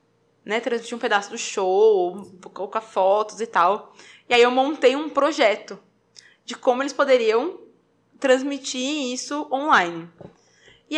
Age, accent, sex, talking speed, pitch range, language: 20-39, Brazilian, female, 130 wpm, 210-275 Hz, Portuguese